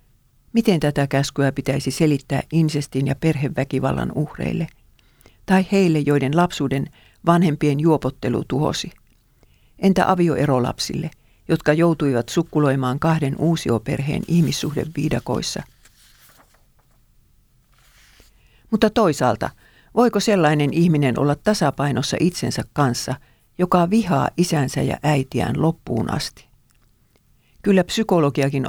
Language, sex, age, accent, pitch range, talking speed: Finnish, female, 50-69, native, 130-170 Hz, 90 wpm